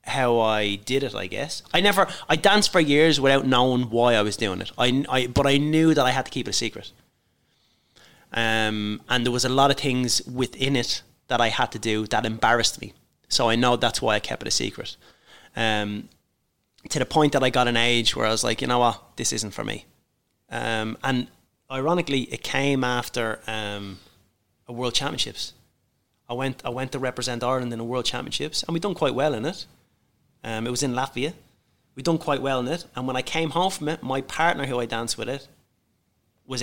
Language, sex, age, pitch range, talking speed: English, male, 30-49, 110-130 Hz, 220 wpm